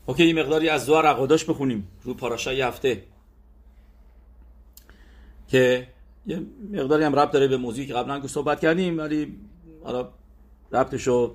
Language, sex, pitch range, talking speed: English, male, 95-125 Hz, 130 wpm